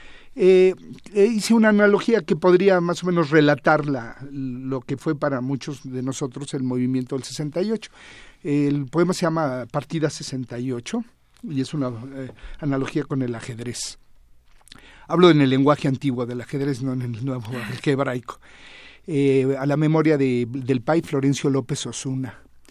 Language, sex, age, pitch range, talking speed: Spanish, male, 40-59, 130-160 Hz, 155 wpm